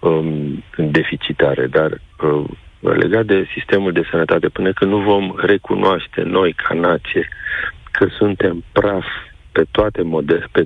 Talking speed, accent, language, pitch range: 135 wpm, native, Romanian, 85-110 Hz